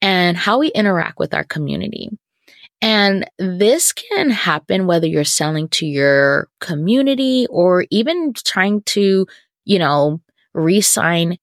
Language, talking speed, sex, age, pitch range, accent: English, 125 wpm, female, 20-39, 165-230 Hz, American